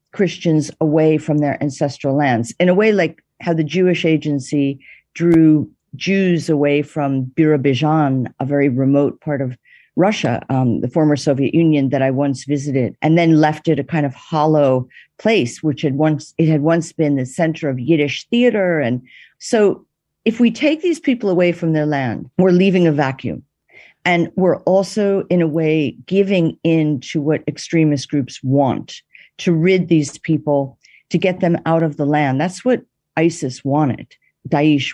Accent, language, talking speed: American, English, 170 wpm